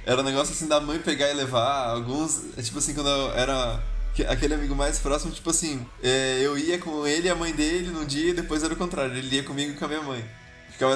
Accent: Brazilian